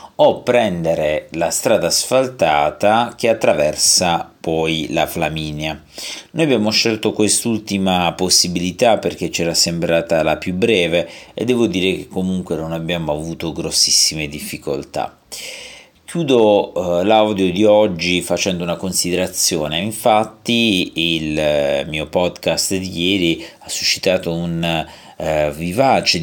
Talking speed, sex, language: 110 wpm, male, Italian